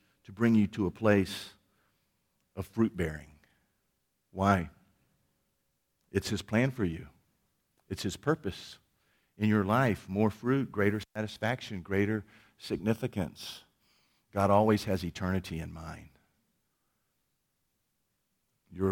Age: 50-69